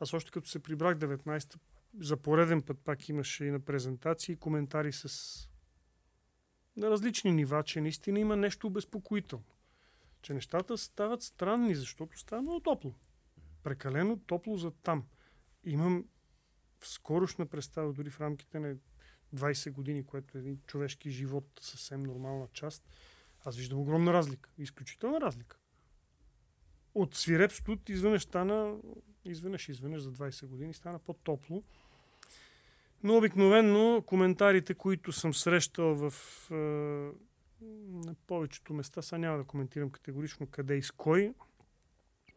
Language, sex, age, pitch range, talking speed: Bulgarian, male, 40-59, 135-180 Hz, 130 wpm